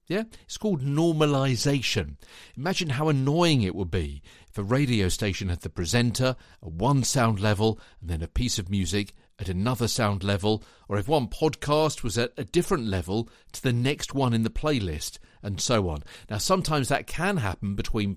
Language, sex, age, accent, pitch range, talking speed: English, male, 50-69, British, 95-140 Hz, 180 wpm